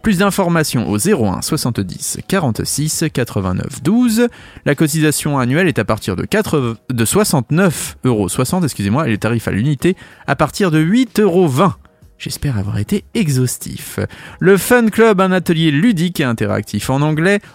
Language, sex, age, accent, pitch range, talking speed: French, male, 30-49, French, 110-175 Hz, 125 wpm